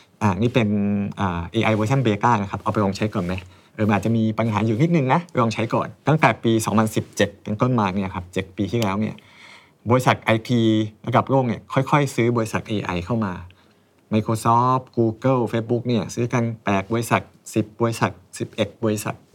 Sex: male